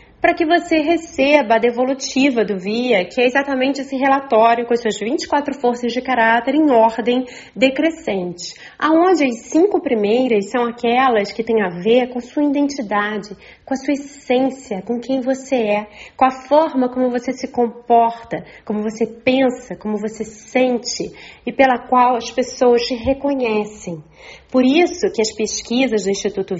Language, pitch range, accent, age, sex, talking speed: Portuguese, 220-265 Hz, Brazilian, 30-49, female, 160 wpm